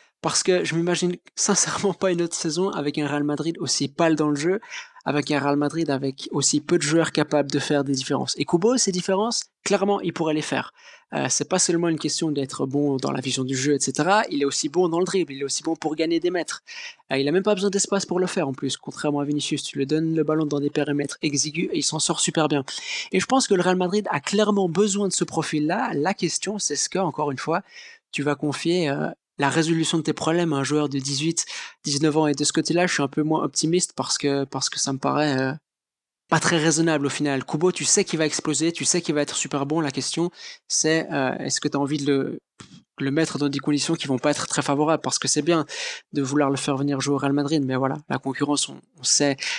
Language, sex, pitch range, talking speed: French, male, 145-175 Hz, 260 wpm